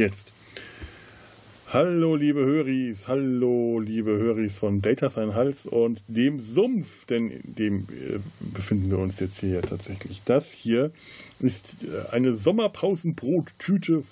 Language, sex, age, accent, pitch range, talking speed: German, male, 20-39, German, 100-120 Hz, 115 wpm